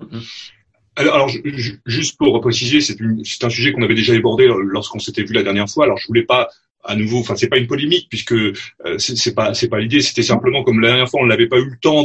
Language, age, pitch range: French, 30-49, 115-160 Hz